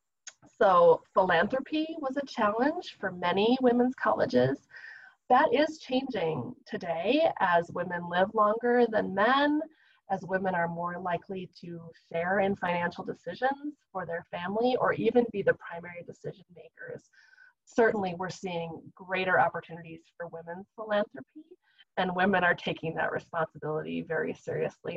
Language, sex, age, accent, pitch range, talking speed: English, female, 20-39, American, 175-275 Hz, 130 wpm